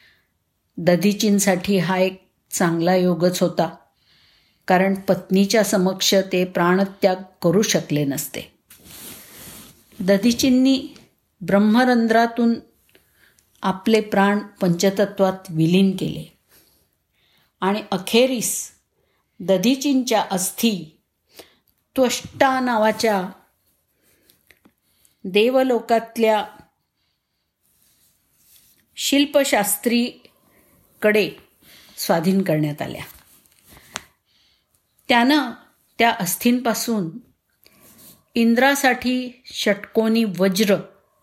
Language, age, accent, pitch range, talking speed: Marathi, 50-69, native, 180-220 Hz, 55 wpm